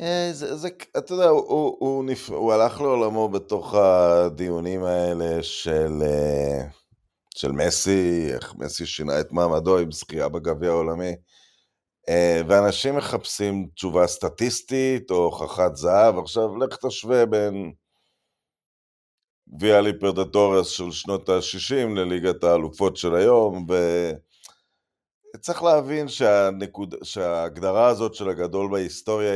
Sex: male